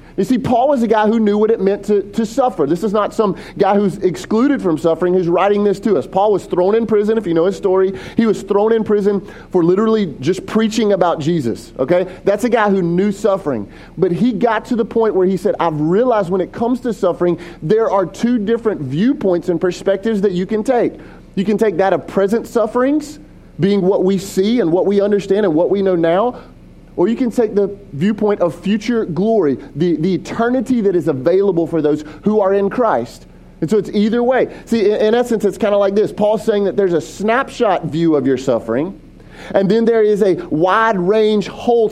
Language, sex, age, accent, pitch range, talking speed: English, male, 30-49, American, 175-220 Hz, 225 wpm